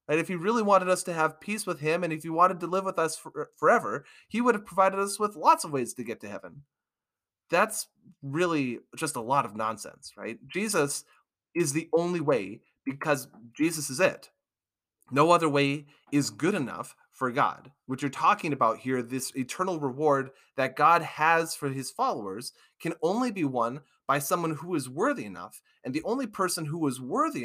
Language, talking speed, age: English, 190 wpm, 30-49